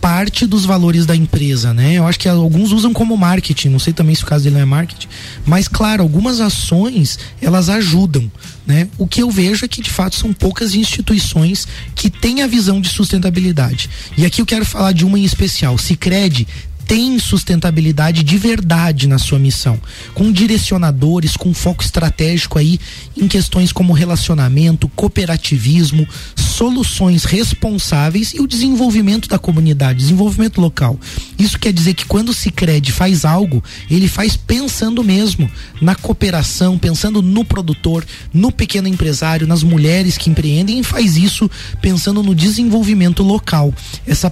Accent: Brazilian